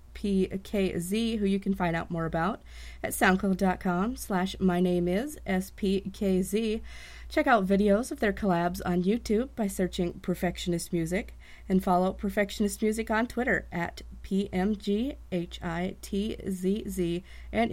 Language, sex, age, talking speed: English, female, 30-49, 130 wpm